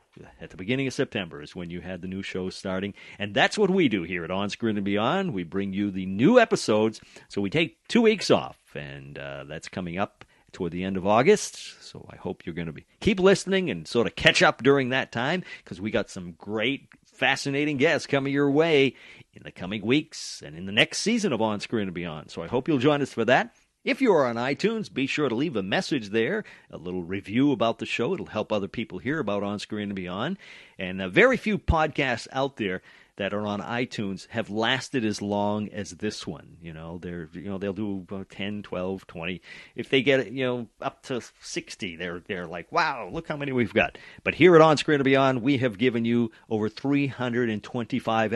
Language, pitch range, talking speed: English, 95-135 Hz, 225 wpm